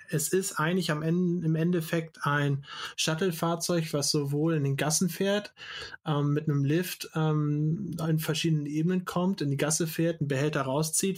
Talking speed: 165 wpm